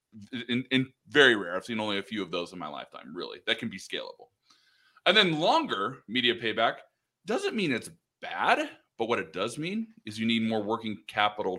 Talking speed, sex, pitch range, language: 205 wpm, male, 105-140 Hz, English